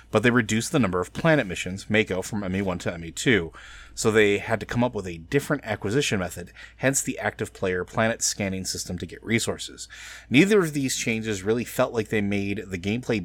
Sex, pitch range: male, 95-125 Hz